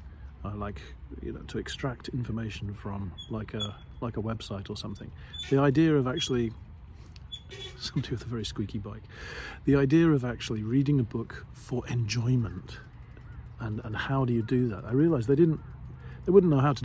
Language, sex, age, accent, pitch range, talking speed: English, male, 40-59, British, 100-125 Hz, 180 wpm